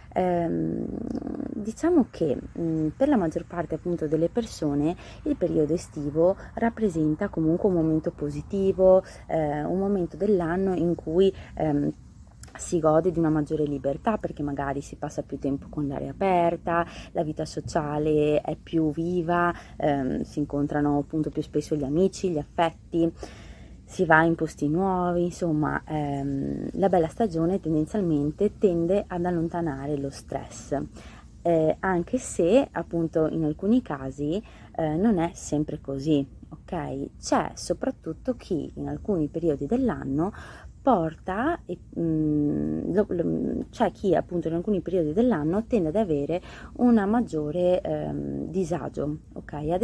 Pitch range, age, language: 150-190 Hz, 20-39, Italian